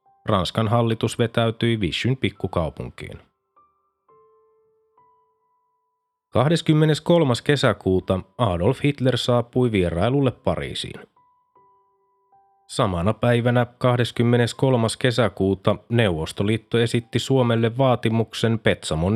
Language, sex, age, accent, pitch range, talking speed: Finnish, male, 30-49, native, 110-135 Hz, 65 wpm